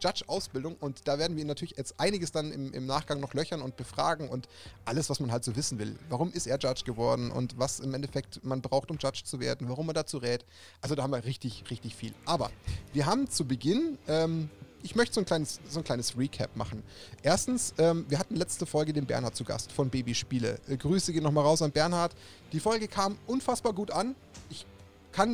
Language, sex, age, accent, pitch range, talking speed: German, male, 30-49, German, 135-175 Hz, 225 wpm